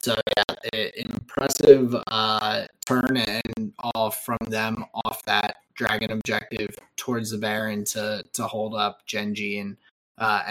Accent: American